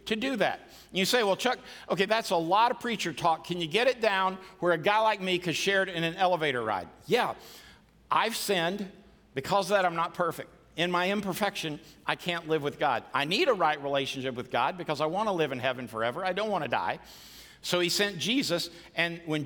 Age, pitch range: 50-69, 150-190 Hz